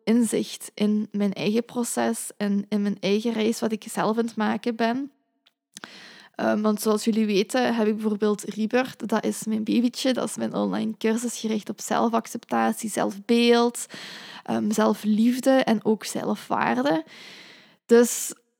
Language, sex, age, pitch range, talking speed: Dutch, female, 20-39, 215-240 Hz, 140 wpm